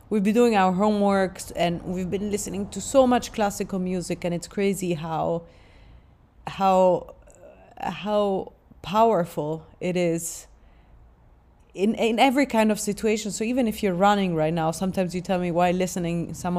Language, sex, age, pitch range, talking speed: English, female, 30-49, 170-210 Hz, 155 wpm